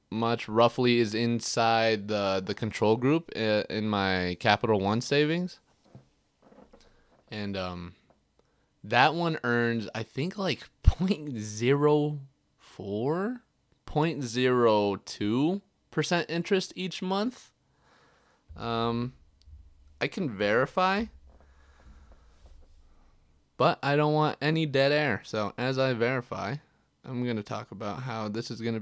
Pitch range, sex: 105-140 Hz, male